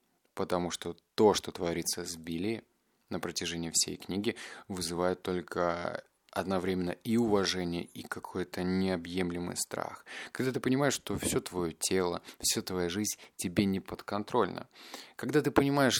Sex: male